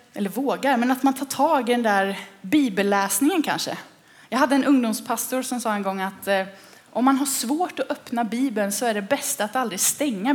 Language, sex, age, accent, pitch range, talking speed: Swedish, female, 20-39, native, 205-270 Hz, 210 wpm